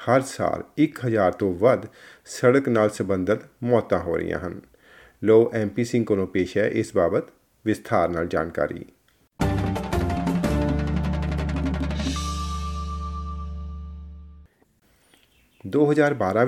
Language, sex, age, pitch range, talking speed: Punjabi, male, 40-59, 95-120 Hz, 75 wpm